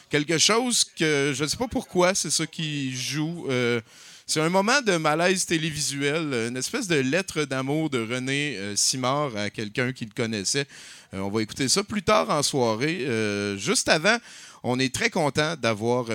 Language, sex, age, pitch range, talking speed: French, male, 30-49, 120-180 Hz, 185 wpm